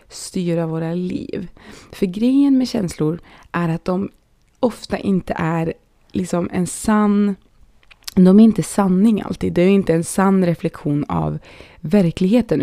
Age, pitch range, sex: 20-39, 165-205 Hz, female